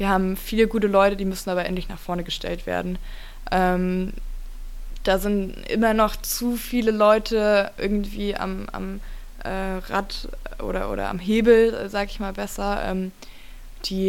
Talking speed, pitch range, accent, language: 155 wpm, 185-210 Hz, German, German